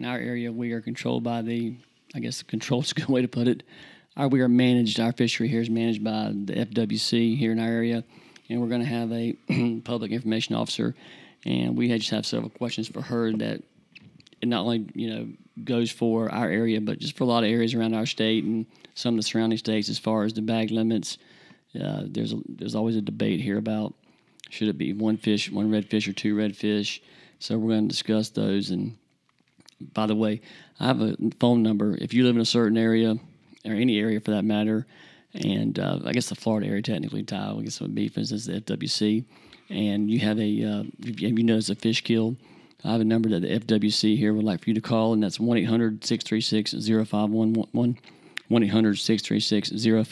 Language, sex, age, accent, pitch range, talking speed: English, male, 40-59, American, 110-115 Hz, 215 wpm